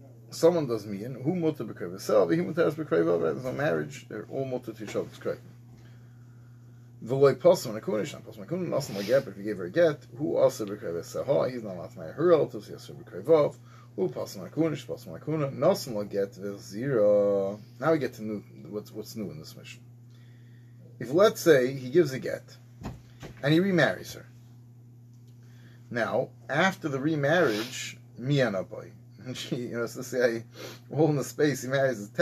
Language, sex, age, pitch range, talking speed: English, male, 30-49, 115-135 Hz, 115 wpm